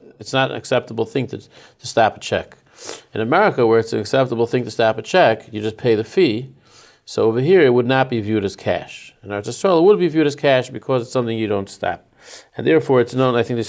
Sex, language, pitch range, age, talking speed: male, English, 110-135 Hz, 40-59, 255 wpm